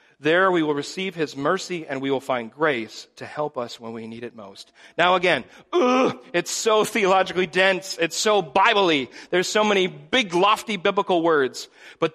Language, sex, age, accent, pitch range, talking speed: English, male, 40-59, American, 155-200 Hz, 185 wpm